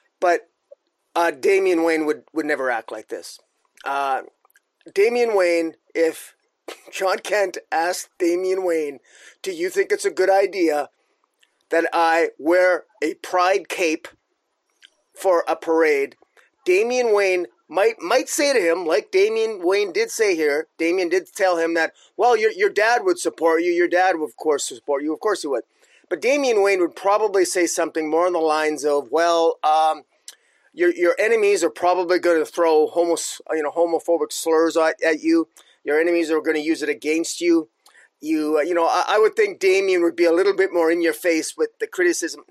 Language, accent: English, American